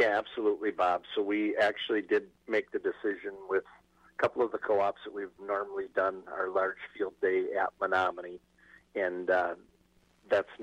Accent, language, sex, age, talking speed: American, English, male, 50-69, 165 wpm